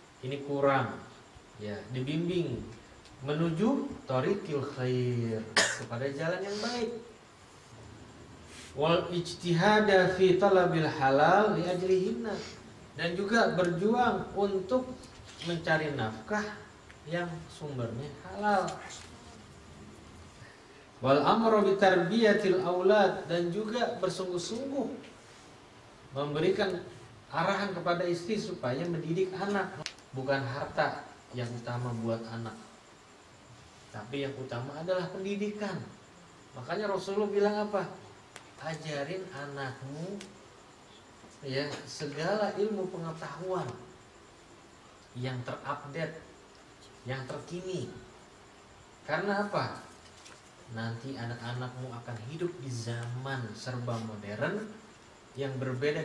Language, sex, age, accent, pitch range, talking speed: Indonesian, male, 40-59, native, 130-190 Hz, 80 wpm